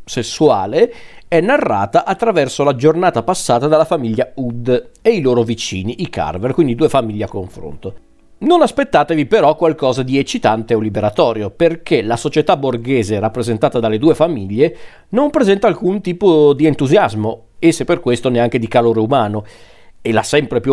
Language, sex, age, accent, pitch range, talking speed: Italian, male, 40-59, native, 115-155 Hz, 155 wpm